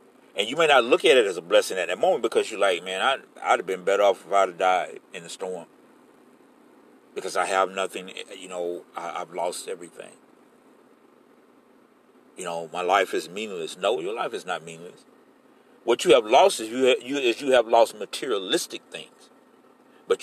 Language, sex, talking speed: English, male, 185 wpm